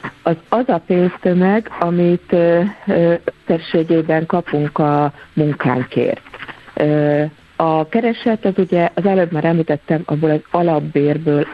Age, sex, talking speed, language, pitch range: 50-69, female, 105 wpm, Hungarian, 155-190 Hz